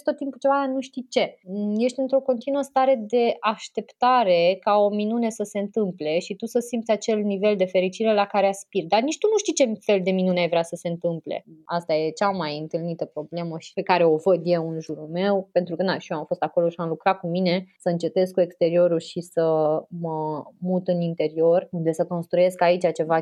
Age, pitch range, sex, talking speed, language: 20-39, 165-205 Hz, female, 220 wpm, Romanian